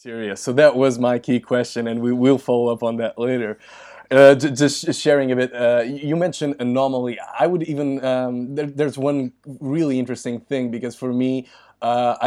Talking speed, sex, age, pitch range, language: 175 wpm, male, 20-39, 115-130 Hz, English